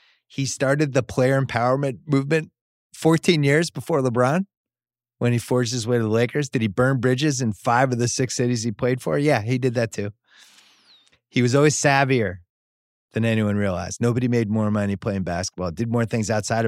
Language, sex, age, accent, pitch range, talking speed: English, male, 30-49, American, 100-125 Hz, 190 wpm